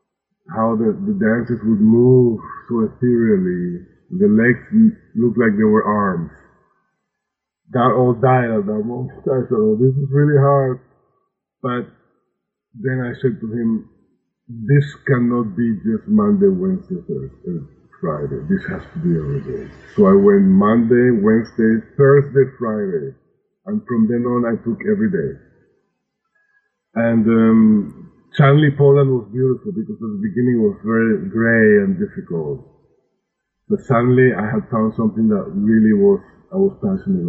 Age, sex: 50-69, male